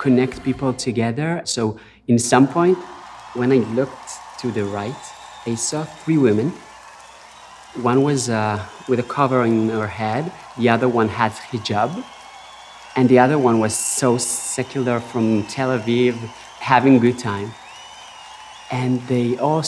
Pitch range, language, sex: 110-140 Hz, English, male